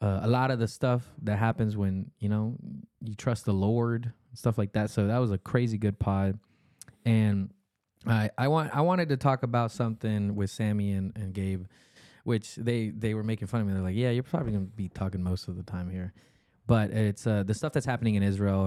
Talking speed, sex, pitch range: 230 wpm, male, 95-120 Hz